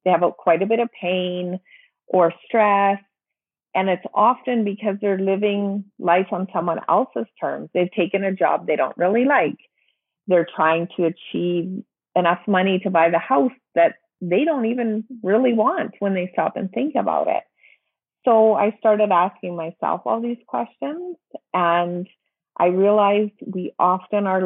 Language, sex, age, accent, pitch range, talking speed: English, female, 40-59, American, 170-215 Hz, 160 wpm